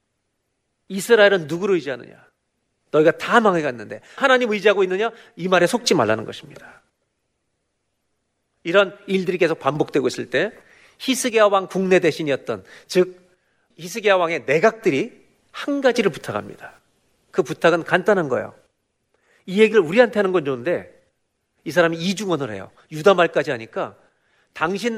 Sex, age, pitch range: male, 40-59, 155-210 Hz